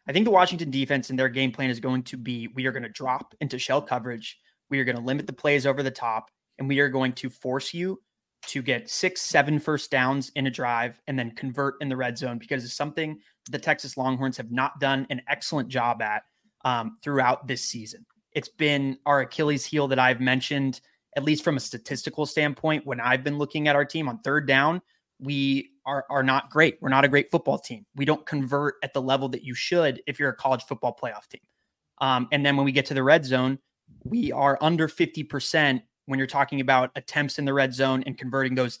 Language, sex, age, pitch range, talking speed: English, male, 20-39, 130-145 Hz, 230 wpm